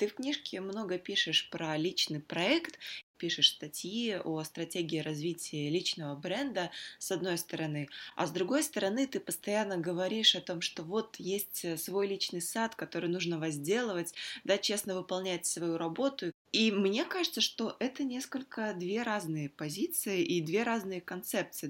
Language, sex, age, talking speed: Russian, female, 20-39, 150 wpm